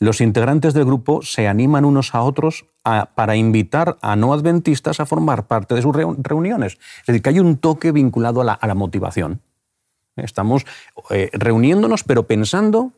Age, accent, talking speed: 40-59, Spanish, 175 wpm